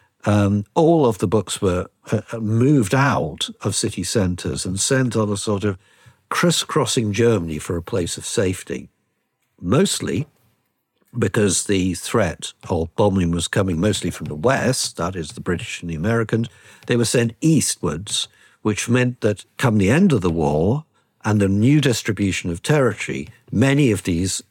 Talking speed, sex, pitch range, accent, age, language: 160 wpm, male, 85-115 Hz, British, 60-79, English